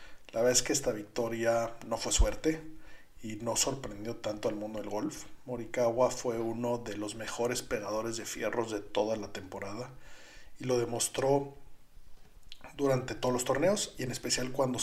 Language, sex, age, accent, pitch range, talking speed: Spanish, male, 40-59, Mexican, 110-125 Hz, 165 wpm